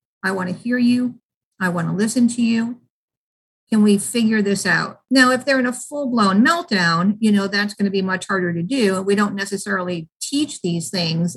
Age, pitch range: 50-69, 190-245 Hz